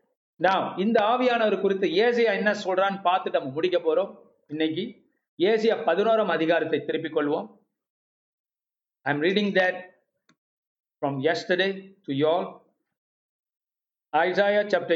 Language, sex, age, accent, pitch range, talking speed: Tamil, male, 50-69, native, 155-195 Hz, 80 wpm